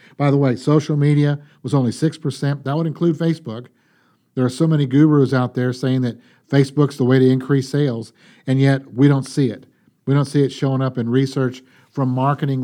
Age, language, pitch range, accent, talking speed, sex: 50-69, English, 120-140 Hz, American, 205 wpm, male